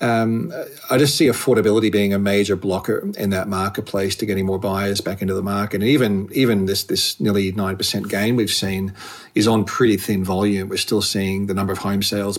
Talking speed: 210 wpm